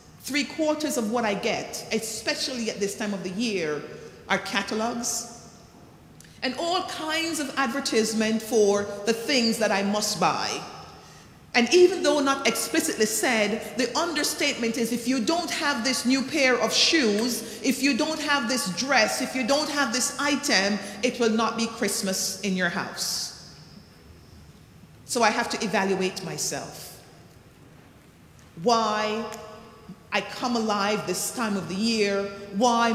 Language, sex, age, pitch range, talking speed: English, female, 40-59, 210-255 Hz, 145 wpm